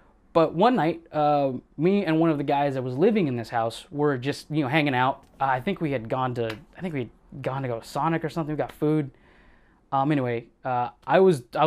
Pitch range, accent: 135-180 Hz, American